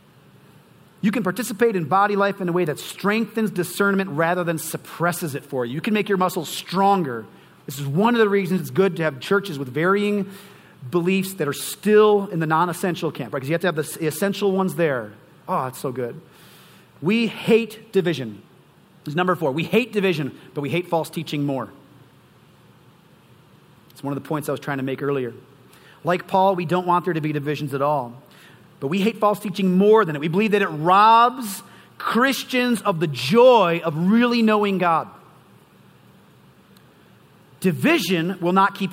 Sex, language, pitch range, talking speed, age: male, English, 160-215 Hz, 190 wpm, 40-59